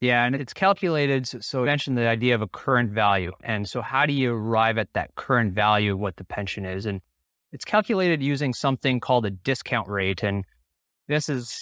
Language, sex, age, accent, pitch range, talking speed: English, male, 30-49, American, 110-135 Hz, 205 wpm